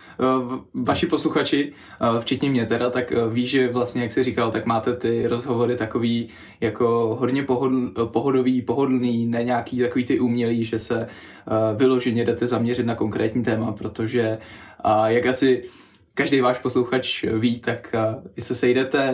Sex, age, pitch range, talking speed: male, 20-39, 120-140 Hz, 140 wpm